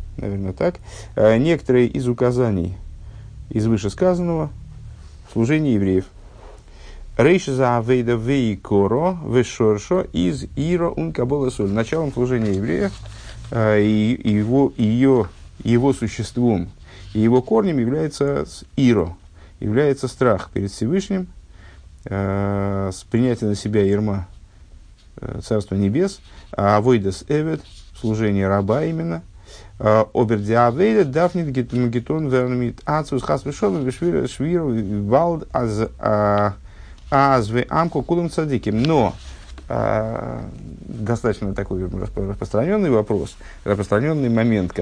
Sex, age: male, 50-69